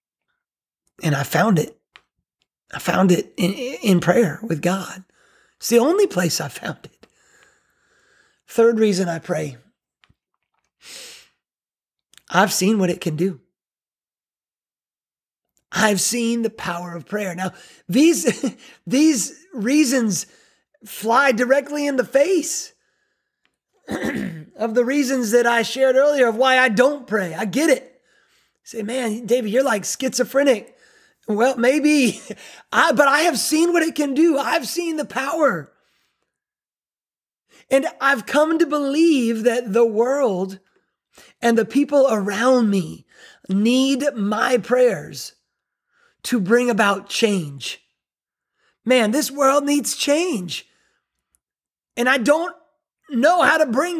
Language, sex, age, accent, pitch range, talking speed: English, male, 30-49, American, 210-285 Hz, 125 wpm